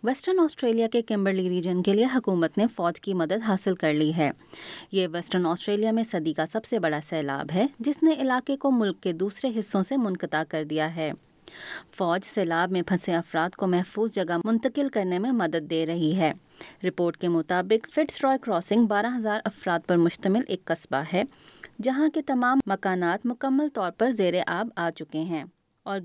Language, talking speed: Urdu, 190 wpm